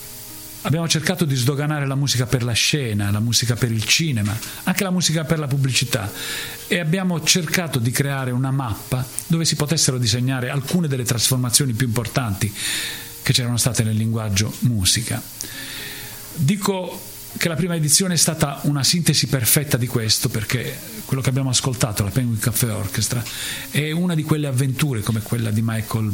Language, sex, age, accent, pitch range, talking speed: Italian, male, 40-59, native, 110-140 Hz, 165 wpm